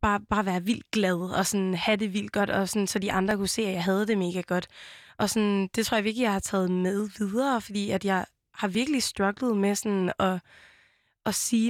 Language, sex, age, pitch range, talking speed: Danish, female, 20-39, 190-220 Hz, 235 wpm